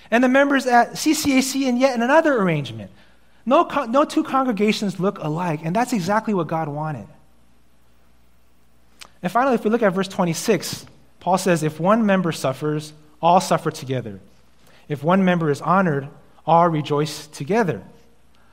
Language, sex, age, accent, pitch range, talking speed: English, male, 30-49, American, 150-215 Hz, 150 wpm